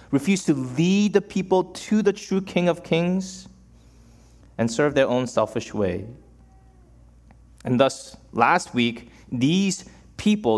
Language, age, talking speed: English, 30-49, 130 wpm